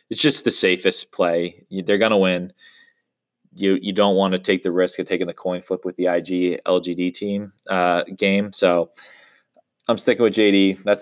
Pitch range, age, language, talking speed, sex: 90-110 Hz, 20-39, English, 185 wpm, male